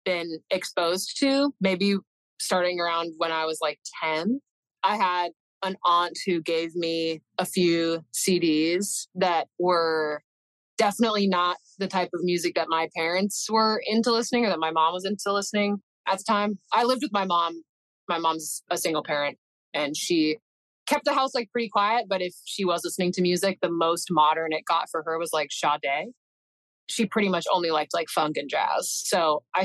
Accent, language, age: American, English, 20-39